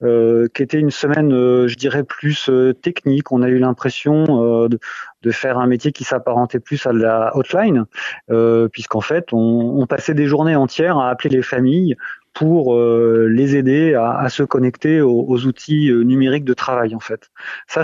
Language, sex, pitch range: French, male, 120-145 Hz